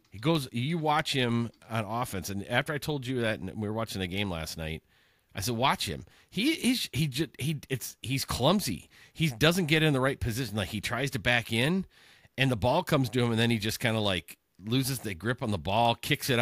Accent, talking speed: American, 245 wpm